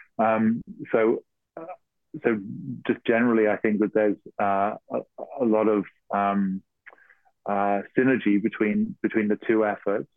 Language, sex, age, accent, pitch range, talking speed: English, male, 30-49, British, 100-110 Hz, 130 wpm